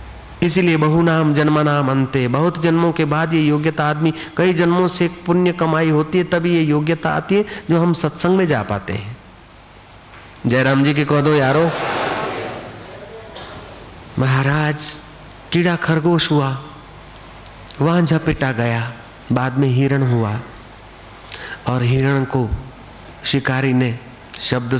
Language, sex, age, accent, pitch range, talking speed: Hindi, male, 50-69, native, 120-150 Hz, 135 wpm